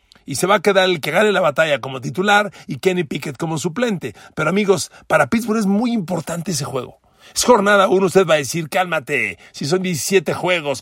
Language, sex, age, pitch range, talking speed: Spanish, male, 40-59, 140-195 Hz, 210 wpm